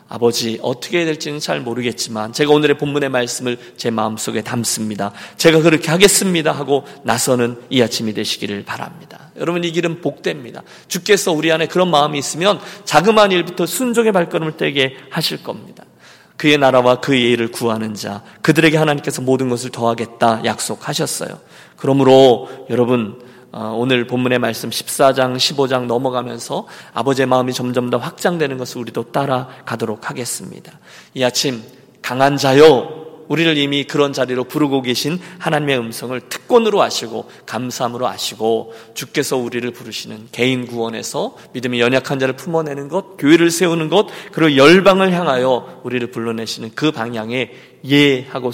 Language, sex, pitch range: Korean, male, 115-155 Hz